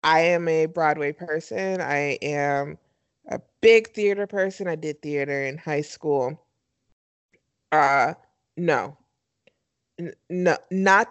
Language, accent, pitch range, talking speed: English, American, 170-240 Hz, 120 wpm